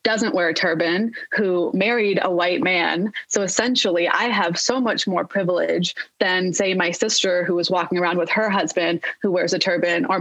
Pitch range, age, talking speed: 175-210 Hz, 20-39, 195 wpm